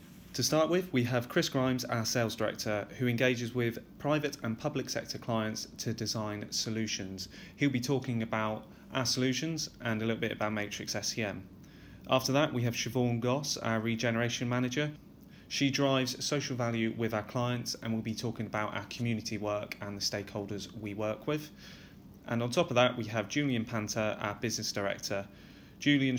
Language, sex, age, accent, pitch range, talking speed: English, male, 30-49, British, 105-125 Hz, 175 wpm